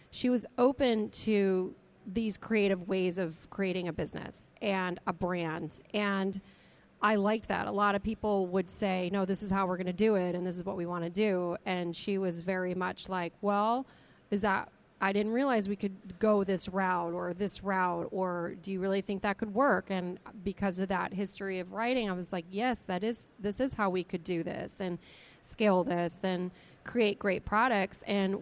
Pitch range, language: 185-215 Hz, English